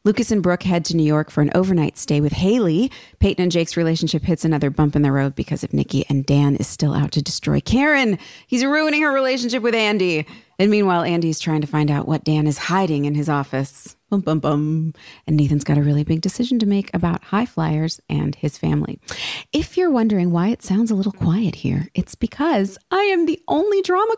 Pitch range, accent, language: 155-235 Hz, American, English